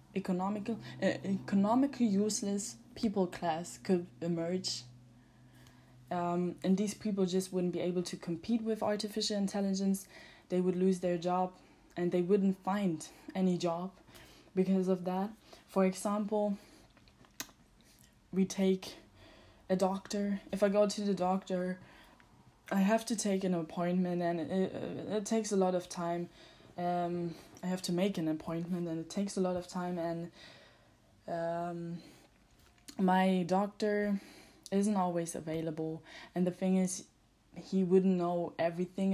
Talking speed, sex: 140 wpm, female